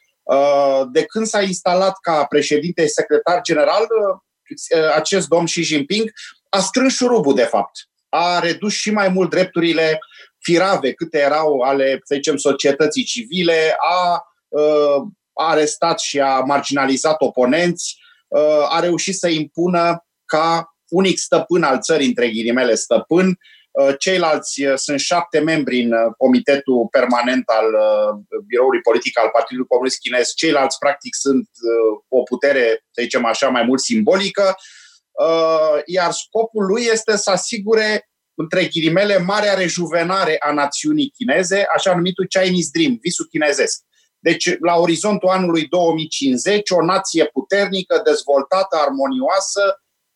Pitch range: 150-200 Hz